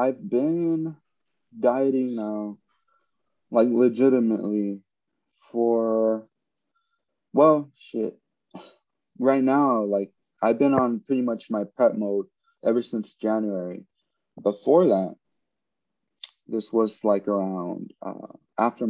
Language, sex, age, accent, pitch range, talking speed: English, male, 20-39, American, 105-125 Hz, 100 wpm